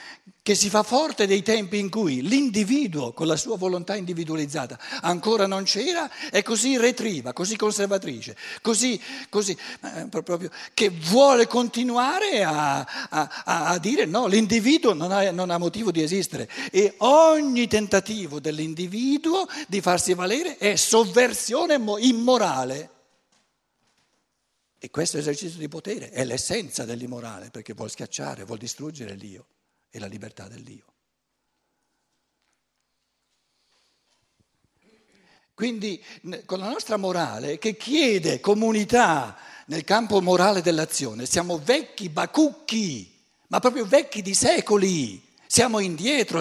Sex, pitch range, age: male, 160-240 Hz, 60-79